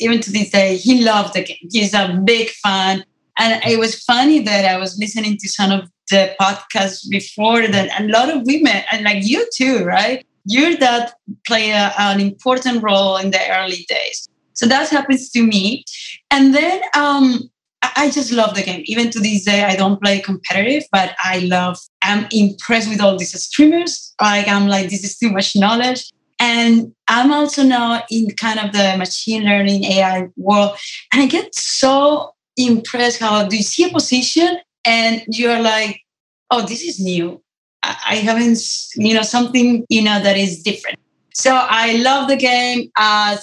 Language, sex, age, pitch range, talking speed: English, female, 30-49, 195-240 Hz, 180 wpm